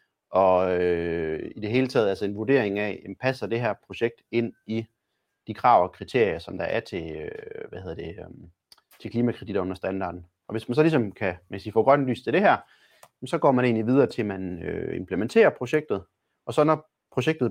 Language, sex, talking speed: Danish, male, 215 wpm